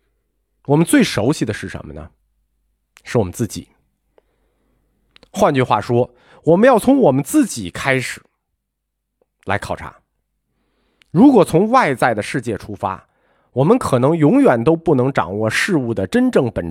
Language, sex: Chinese, male